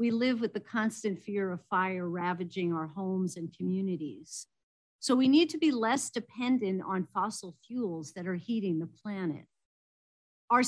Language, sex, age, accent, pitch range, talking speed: English, female, 50-69, American, 175-225 Hz, 165 wpm